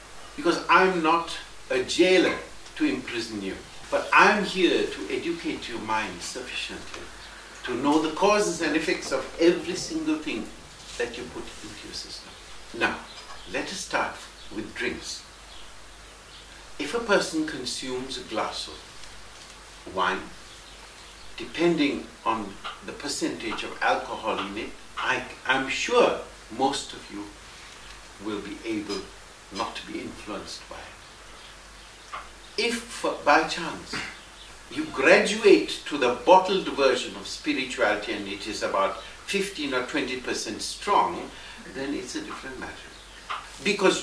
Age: 60-79